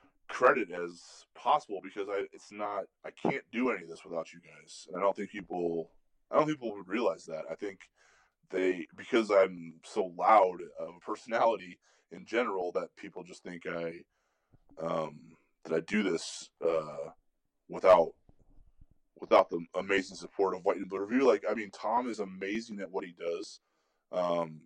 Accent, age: American, 20-39